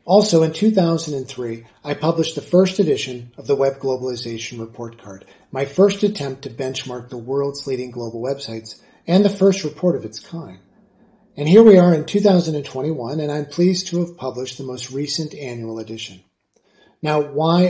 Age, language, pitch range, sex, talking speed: 40-59, English, 130-170 Hz, male, 170 wpm